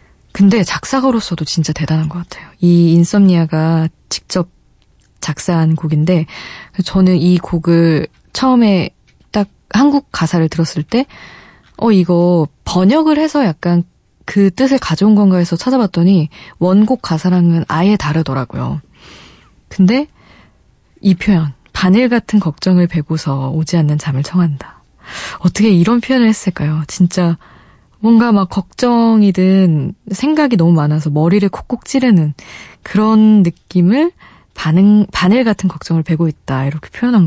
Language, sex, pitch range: Korean, female, 160-205 Hz